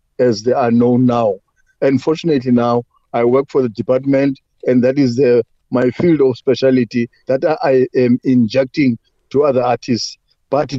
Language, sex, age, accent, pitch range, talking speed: English, male, 50-69, South African, 125-140 Hz, 160 wpm